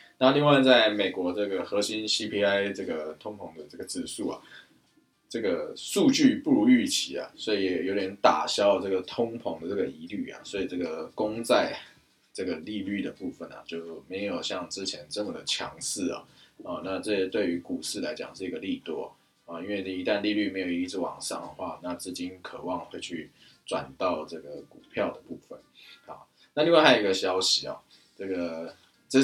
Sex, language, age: male, Chinese, 20-39